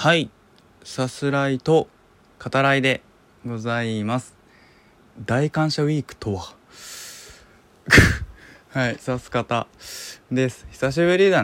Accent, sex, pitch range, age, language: native, male, 90-130 Hz, 20-39, Japanese